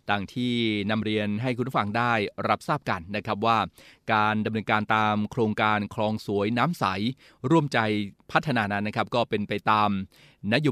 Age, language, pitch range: 20-39, Thai, 105-120 Hz